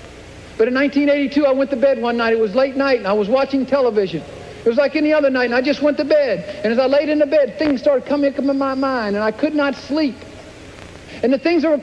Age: 50-69